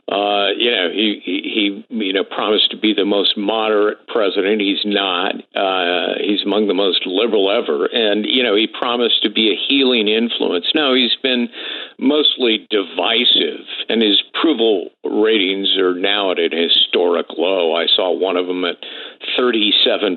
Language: English